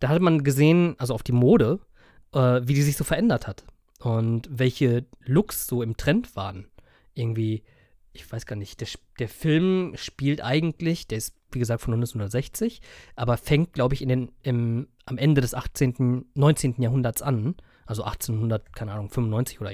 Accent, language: German, German